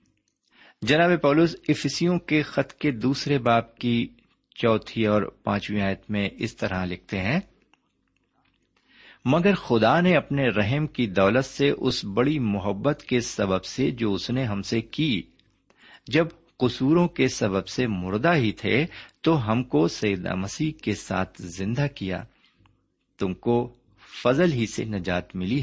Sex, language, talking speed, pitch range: male, Urdu, 145 wpm, 100-140 Hz